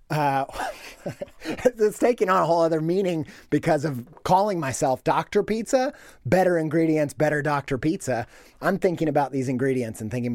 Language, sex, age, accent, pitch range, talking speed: English, male, 30-49, American, 130-175 Hz, 150 wpm